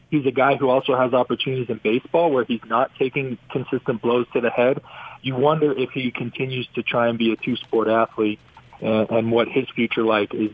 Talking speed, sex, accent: 215 wpm, male, American